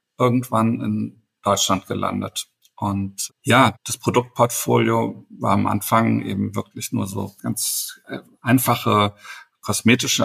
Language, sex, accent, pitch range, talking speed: German, male, German, 105-120 Hz, 105 wpm